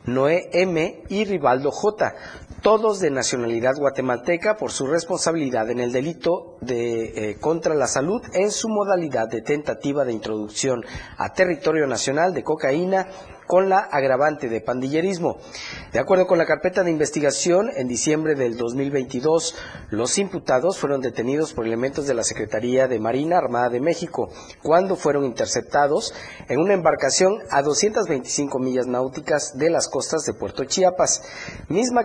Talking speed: 150 wpm